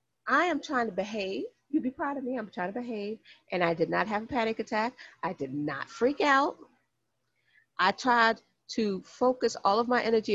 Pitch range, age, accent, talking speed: 175-270 Hz, 40-59, American, 205 wpm